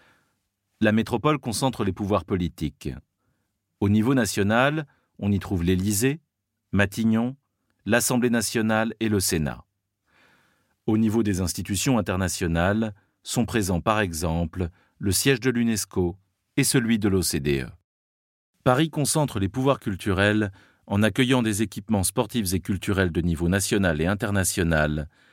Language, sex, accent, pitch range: French, male, French, 90-115 Hz